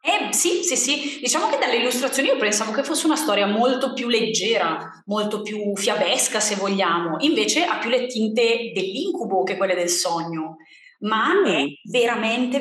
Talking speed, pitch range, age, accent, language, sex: 165 wpm, 185-235 Hz, 20-39, native, Italian, female